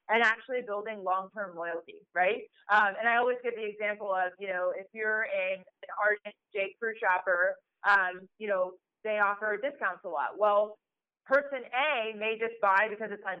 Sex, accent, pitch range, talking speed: female, American, 190-220 Hz, 185 wpm